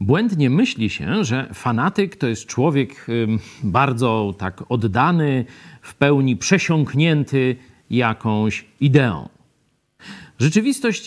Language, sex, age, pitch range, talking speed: Polish, male, 50-69, 120-175 Hz, 90 wpm